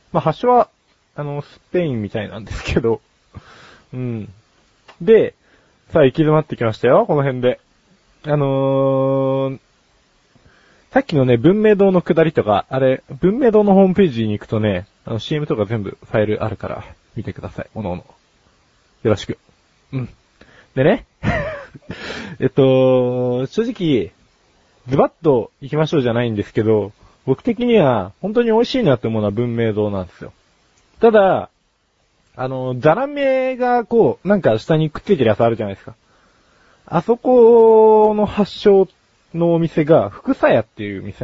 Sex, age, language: male, 20-39, Japanese